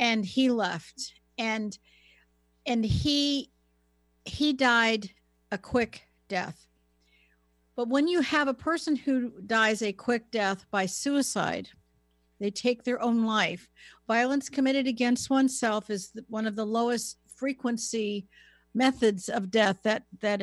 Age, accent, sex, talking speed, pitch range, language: 50-69, American, female, 130 wpm, 195-245 Hz, English